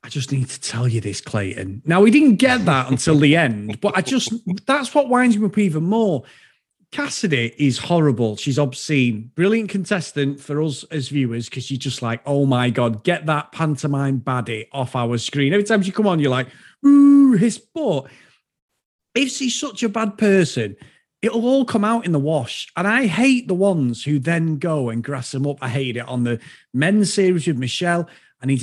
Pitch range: 135-220 Hz